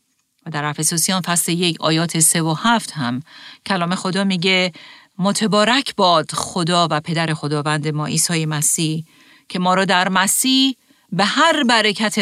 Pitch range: 160-195 Hz